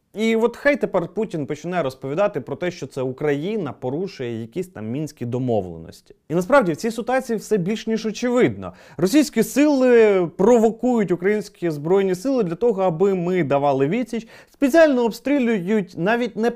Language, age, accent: Ukrainian, 30-49, native